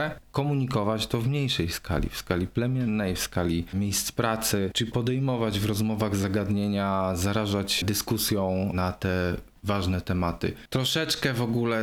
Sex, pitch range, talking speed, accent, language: male, 95-120 Hz, 130 wpm, native, Polish